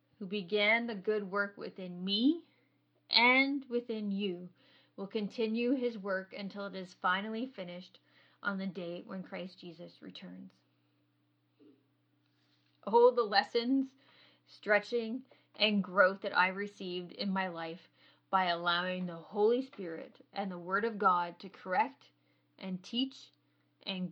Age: 20-39